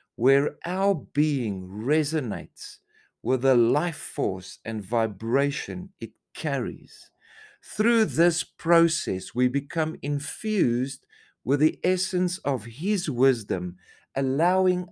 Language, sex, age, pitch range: English, male, 50-69, 110-160 Hz